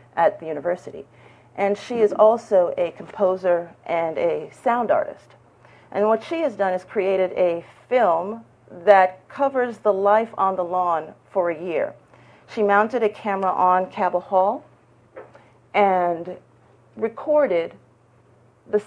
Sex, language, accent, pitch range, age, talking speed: female, English, American, 180-240 Hz, 40-59, 135 wpm